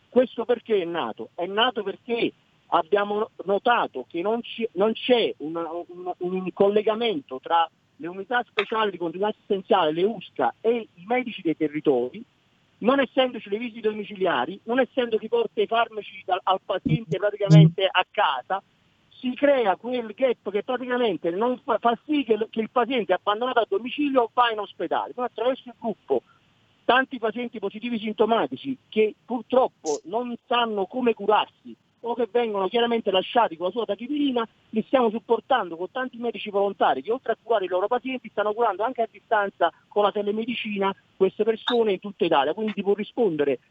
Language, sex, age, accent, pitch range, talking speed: Italian, male, 50-69, native, 185-240 Hz, 170 wpm